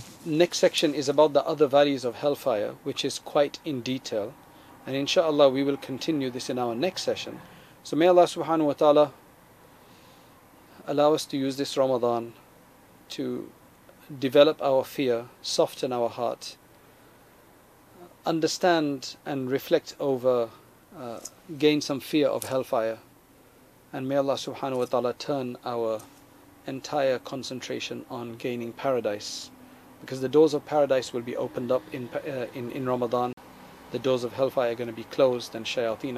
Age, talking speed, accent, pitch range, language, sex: 40-59, 150 wpm, South African, 125-145 Hz, English, male